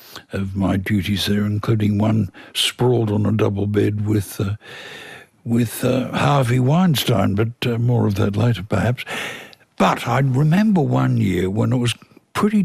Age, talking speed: 60-79, 155 wpm